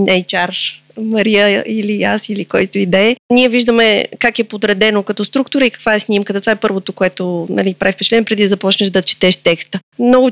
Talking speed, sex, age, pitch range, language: 200 wpm, female, 30-49, 205-245 Hz, Bulgarian